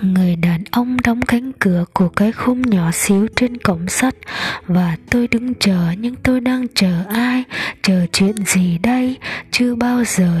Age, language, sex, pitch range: 20-39, Japanese, female, 185-245 Hz